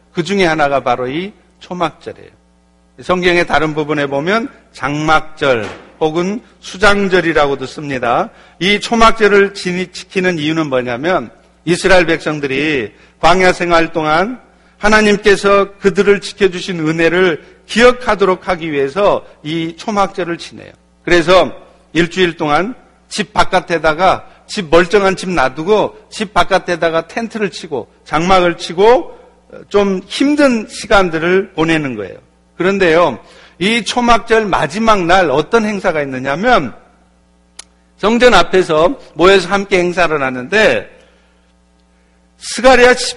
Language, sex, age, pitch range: Korean, male, 50-69, 155-205 Hz